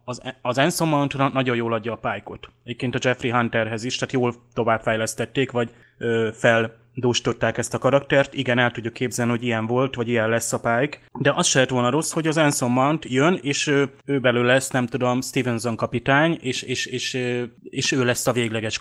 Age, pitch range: 20-39, 115-130 Hz